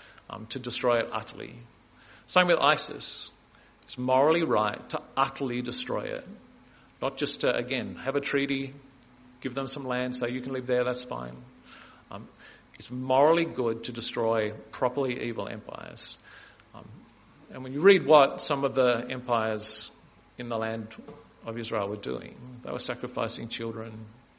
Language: English